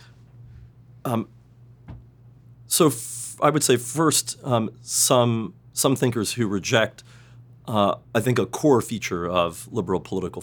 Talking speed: 125 wpm